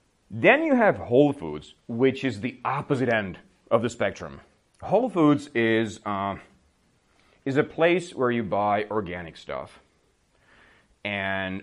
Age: 30-49